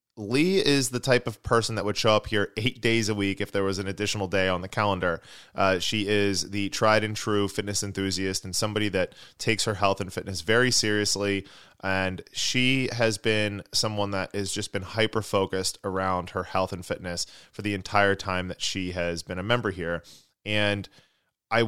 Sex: male